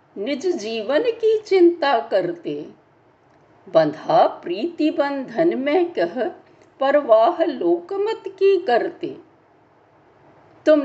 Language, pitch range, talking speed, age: Hindi, 250-350 Hz, 85 wpm, 60-79